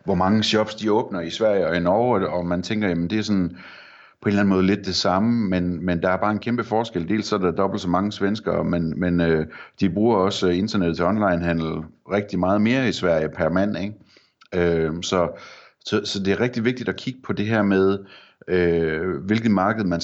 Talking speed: 230 wpm